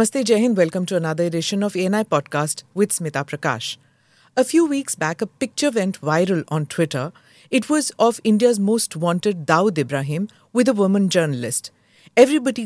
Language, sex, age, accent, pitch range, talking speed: English, female, 50-69, Indian, 165-240 Hz, 160 wpm